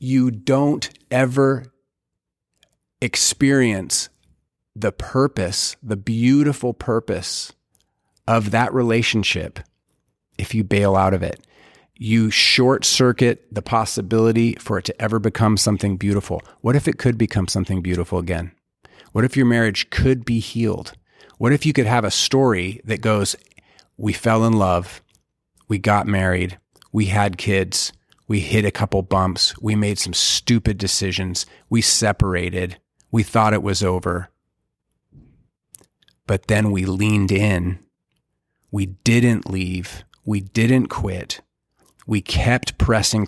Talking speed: 130 wpm